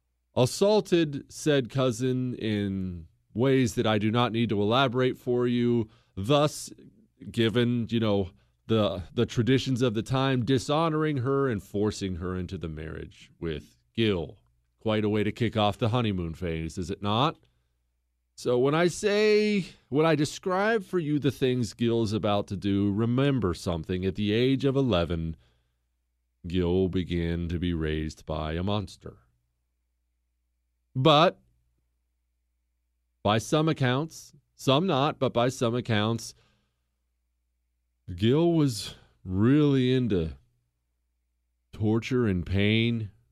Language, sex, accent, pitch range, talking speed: English, male, American, 80-125 Hz, 130 wpm